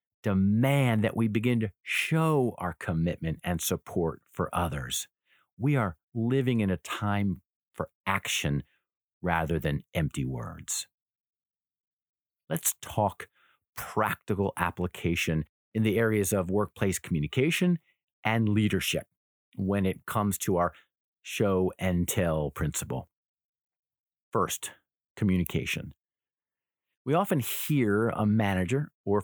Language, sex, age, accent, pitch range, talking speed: English, male, 50-69, American, 90-135 Hz, 110 wpm